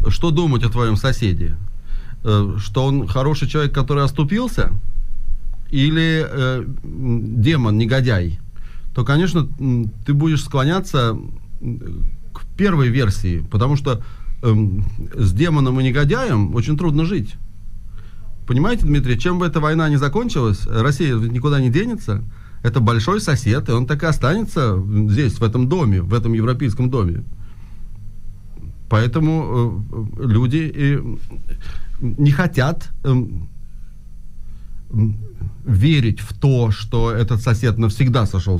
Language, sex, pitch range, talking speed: Russian, male, 105-145 Hz, 115 wpm